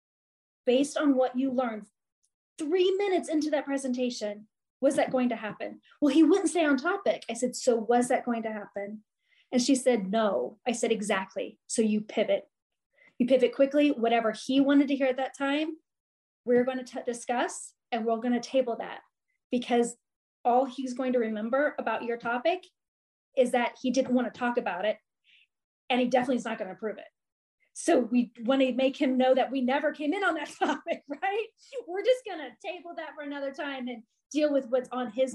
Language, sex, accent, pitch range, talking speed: English, female, American, 245-305 Hz, 200 wpm